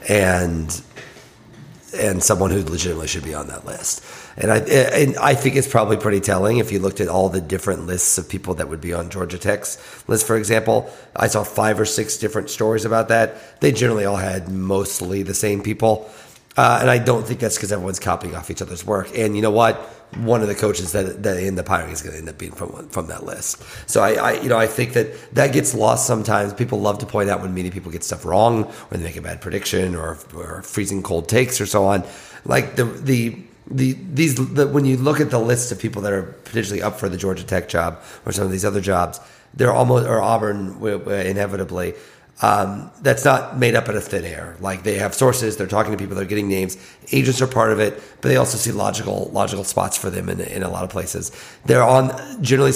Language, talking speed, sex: English, 230 wpm, male